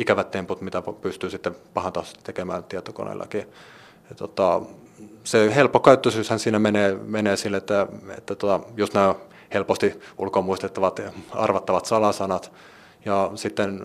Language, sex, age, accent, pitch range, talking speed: Finnish, male, 30-49, native, 95-110 Hz, 115 wpm